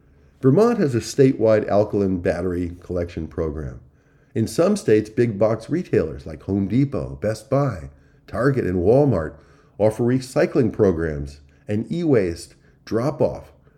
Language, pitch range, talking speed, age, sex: English, 95-135 Hz, 120 wpm, 50-69, male